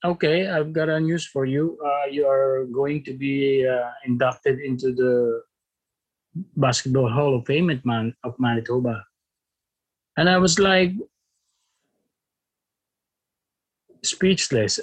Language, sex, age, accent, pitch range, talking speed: Filipino, male, 50-69, native, 125-150 Hz, 115 wpm